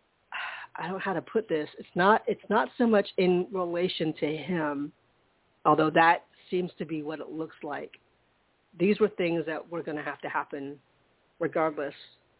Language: English